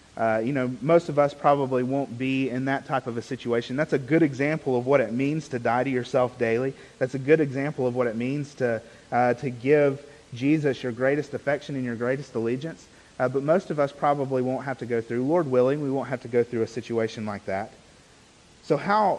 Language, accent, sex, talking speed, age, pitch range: English, American, male, 245 wpm, 30-49, 125-160 Hz